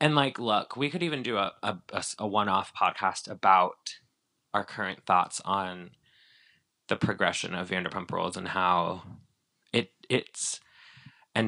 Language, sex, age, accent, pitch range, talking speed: English, male, 20-39, American, 95-115 Hz, 140 wpm